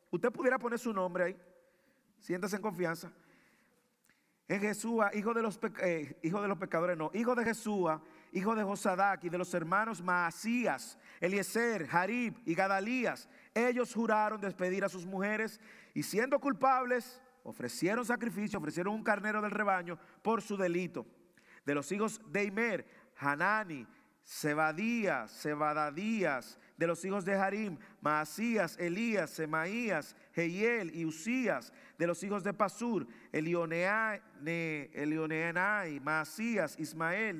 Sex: male